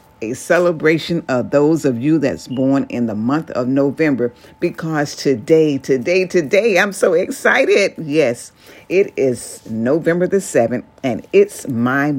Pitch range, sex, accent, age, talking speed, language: 130-175 Hz, female, American, 50-69, 145 wpm, English